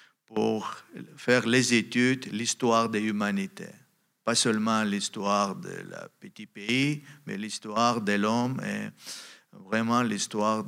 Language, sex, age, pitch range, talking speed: French, male, 50-69, 110-140 Hz, 120 wpm